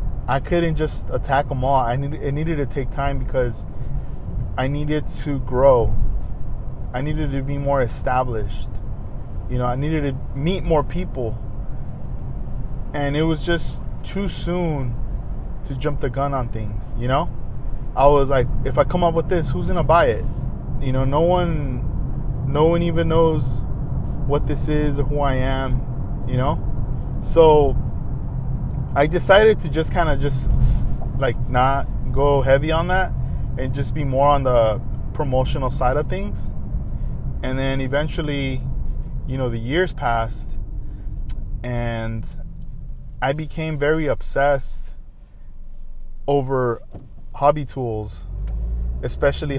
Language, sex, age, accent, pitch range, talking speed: English, male, 20-39, American, 120-145 Hz, 140 wpm